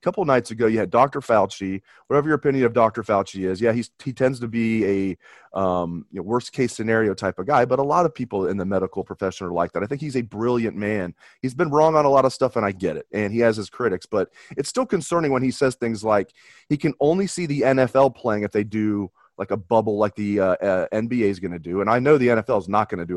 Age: 30-49